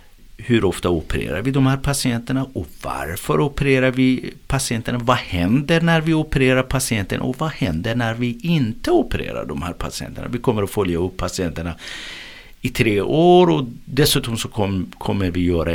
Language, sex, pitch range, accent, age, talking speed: Swedish, male, 90-135 Hz, native, 50-69, 170 wpm